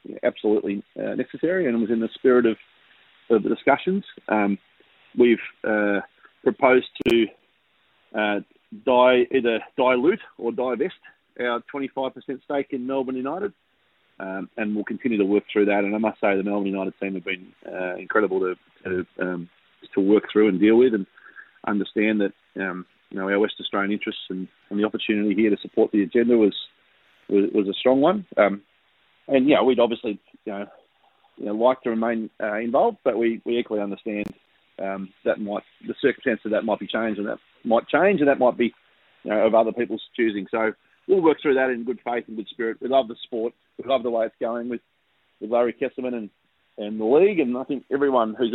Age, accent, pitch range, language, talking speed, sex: 30-49, Australian, 105-130 Hz, English, 205 wpm, male